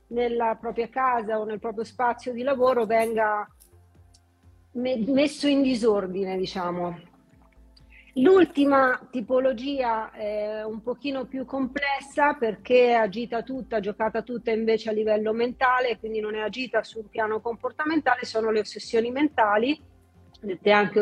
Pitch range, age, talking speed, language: 220-265 Hz, 40-59, 130 wpm, Italian